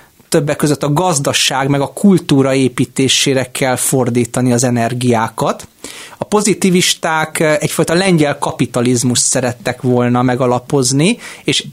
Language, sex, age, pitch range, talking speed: Hungarian, male, 30-49, 130-170 Hz, 105 wpm